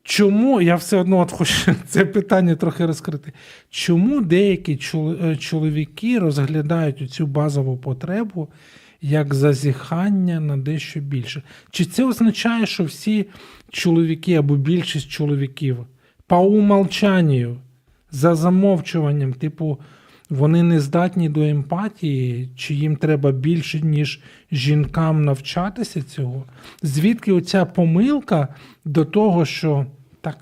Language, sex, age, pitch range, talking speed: Ukrainian, male, 40-59, 135-175 Hz, 110 wpm